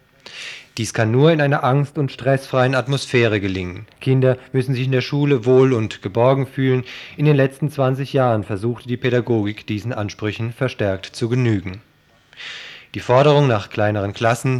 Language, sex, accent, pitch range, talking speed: German, male, German, 110-135 Hz, 155 wpm